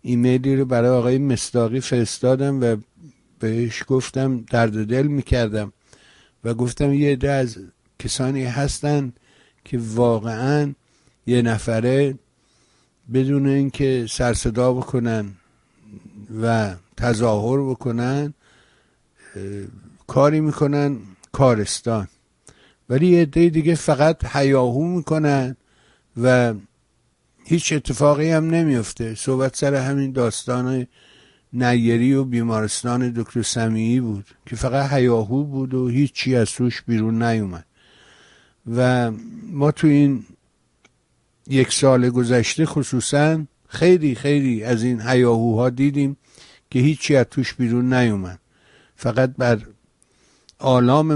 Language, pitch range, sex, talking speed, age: Persian, 115-140 Hz, male, 105 wpm, 60-79